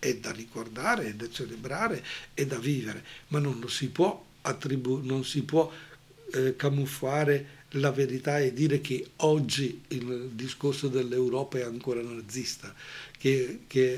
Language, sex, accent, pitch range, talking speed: Italian, male, native, 120-140 Hz, 140 wpm